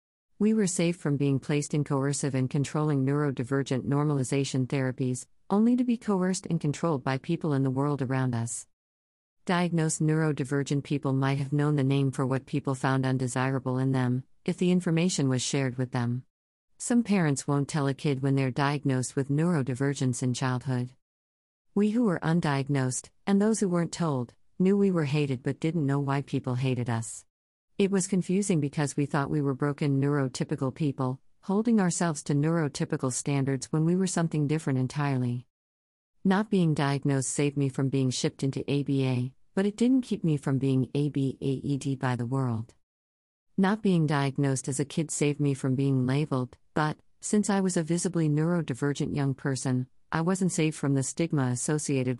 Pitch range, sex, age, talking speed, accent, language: 130-160 Hz, female, 50-69, 175 wpm, American, English